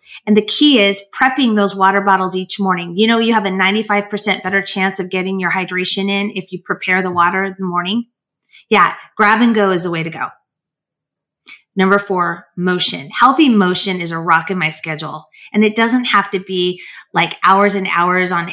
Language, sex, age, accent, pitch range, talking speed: English, female, 30-49, American, 180-215 Hz, 200 wpm